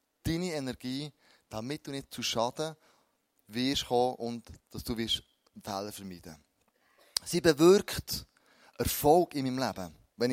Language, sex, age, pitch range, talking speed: German, male, 20-39, 120-165 Hz, 130 wpm